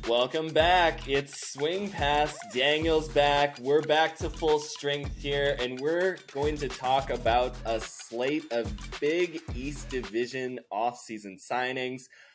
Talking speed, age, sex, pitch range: 130 wpm, 20-39, male, 110-140 Hz